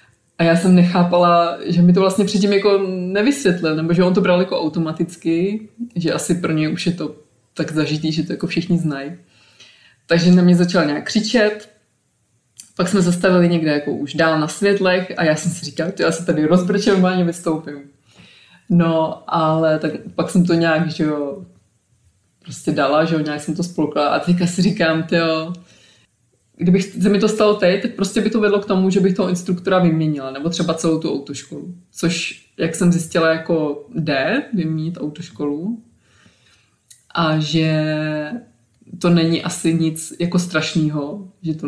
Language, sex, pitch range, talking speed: Czech, female, 150-180 Hz, 175 wpm